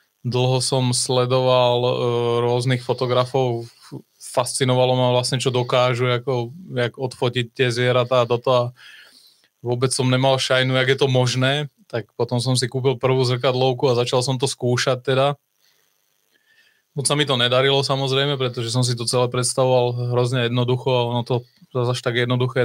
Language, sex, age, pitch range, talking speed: Czech, male, 20-39, 125-135 Hz, 160 wpm